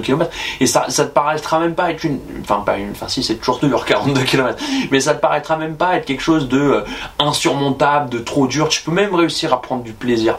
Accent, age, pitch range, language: French, 20-39, 115-150 Hz, French